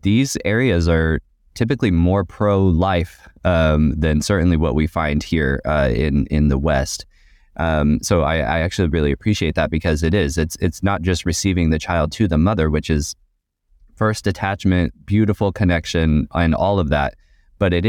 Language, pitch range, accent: English, 75-85 Hz, American